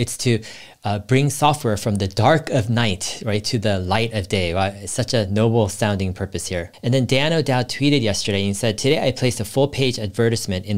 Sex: male